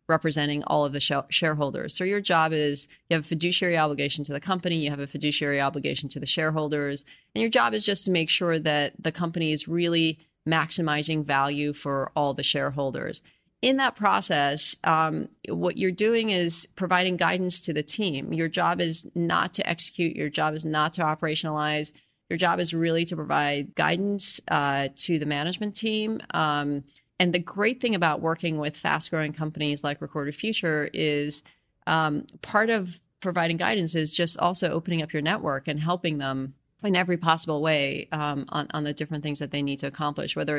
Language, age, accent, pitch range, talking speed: English, 30-49, American, 145-175 Hz, 190 wpm